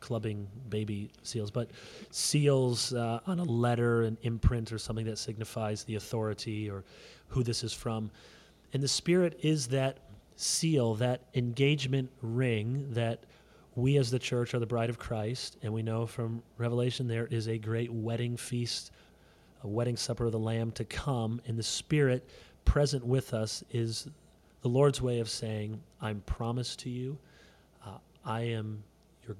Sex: male